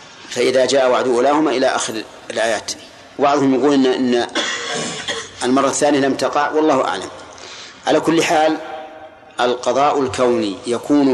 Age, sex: 40-59, male